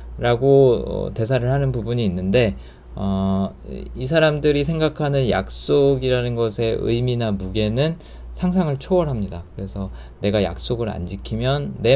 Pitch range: 90-140 Hz